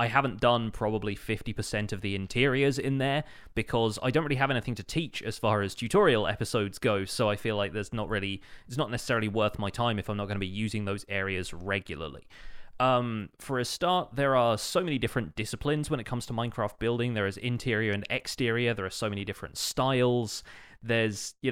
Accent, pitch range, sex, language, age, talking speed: British, 105-125 Hz, male, English, 20-39, 210 wpm